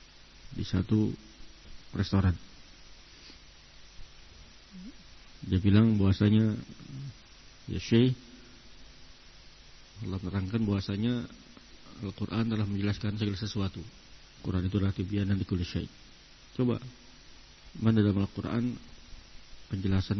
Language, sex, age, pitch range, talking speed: Indonesian, male, 50-69, 90-110 Hz, 75 wpm